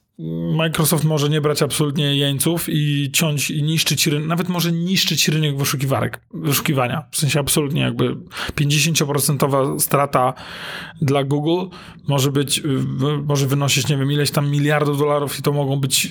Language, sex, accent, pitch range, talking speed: Polish, male, native, 135-160 Hz, 145 wpm